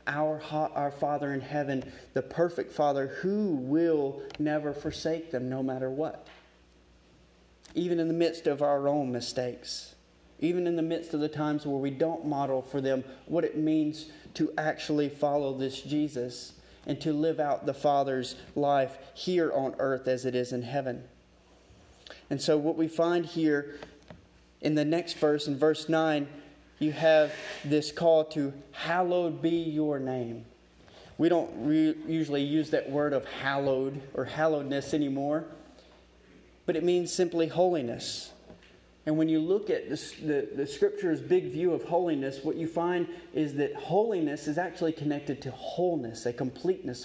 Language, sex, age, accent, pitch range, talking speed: English, male, 30-49, American, 135-160 Hz, 160 wpm